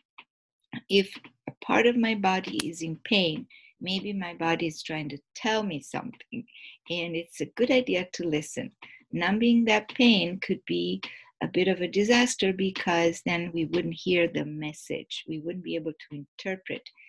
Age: 50-69